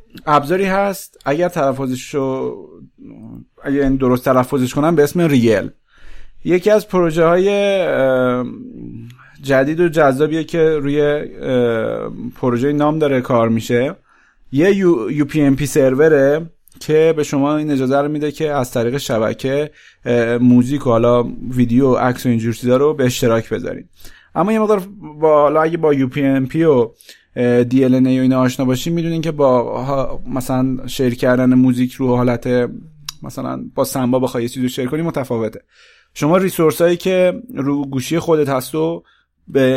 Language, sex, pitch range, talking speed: Persian, male, 125-155 Hz, 140 wpm